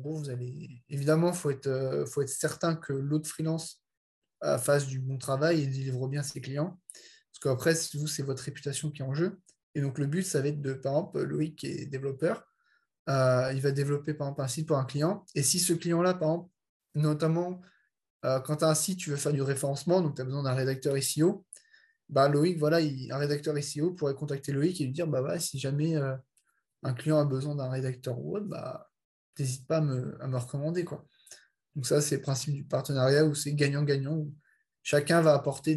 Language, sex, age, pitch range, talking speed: French, male, 20-39, 135-160 Hz, 220 wpm